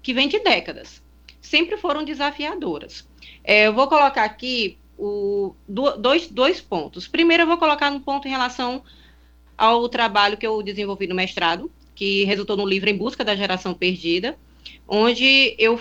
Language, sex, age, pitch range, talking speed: Portuguese, female, 20-39, 185-255 Hz, 150 wpm